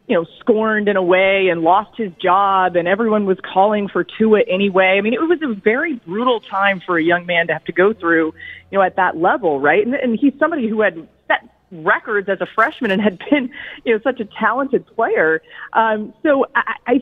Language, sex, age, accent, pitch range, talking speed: English, female, 30-49, American, 190-255 Hz, 220 wpm